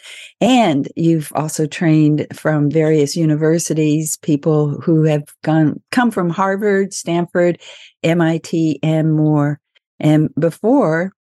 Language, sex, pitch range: English, female, 155-180 Hz